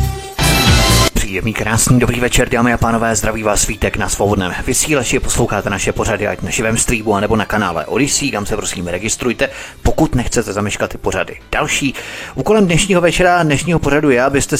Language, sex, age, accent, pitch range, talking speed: Czech, male, 30-49, native, 105-135 Hz, 175 wpm